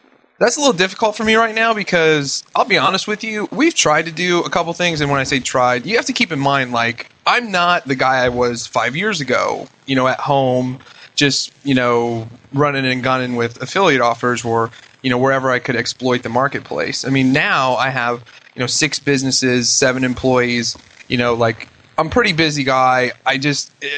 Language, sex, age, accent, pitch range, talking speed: English, male, 30-49, American, 130-165 Hz, 215 wpm